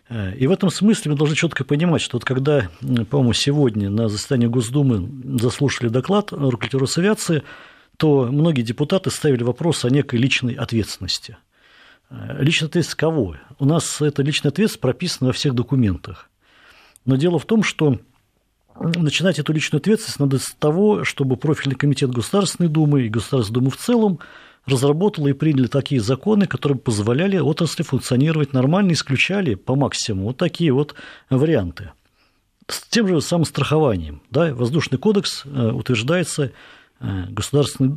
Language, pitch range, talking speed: Russian, 120-155 Hz, 140 wpm